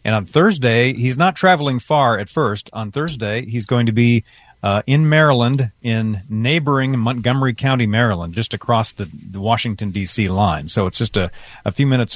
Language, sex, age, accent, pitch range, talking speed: English, male, 40-59, American, 110-135 Hz, 185 wpm